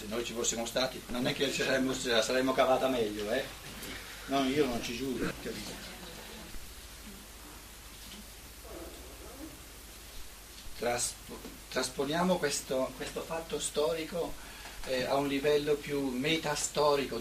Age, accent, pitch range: 60-79, native, 125-185 Hz